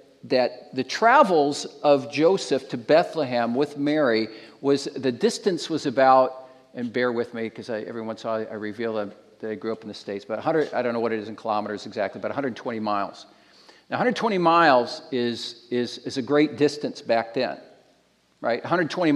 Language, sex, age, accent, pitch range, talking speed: English, male, 50-69, American, 125-160 Hz, 185 wpm